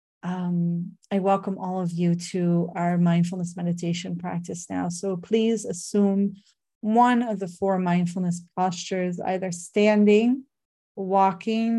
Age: 30-49